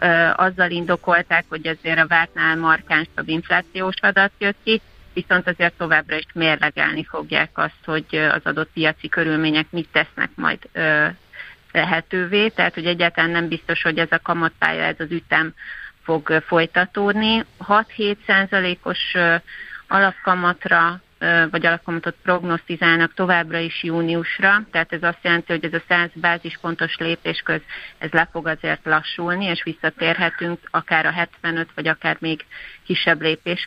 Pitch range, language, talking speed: 165-180 Hz, Hungarian, 135 wpm